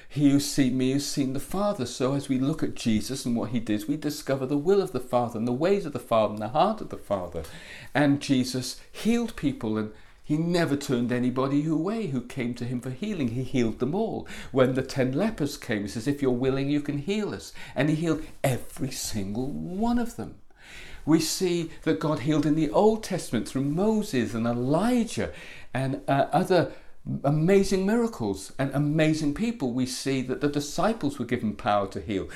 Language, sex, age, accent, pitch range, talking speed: English, male, 60-79, British, 120-155 Hz, 205 wpm